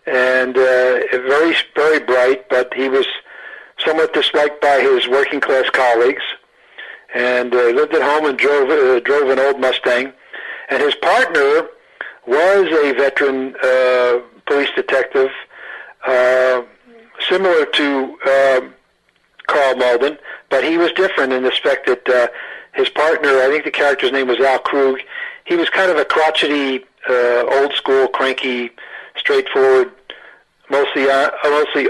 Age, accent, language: 60-79, American, English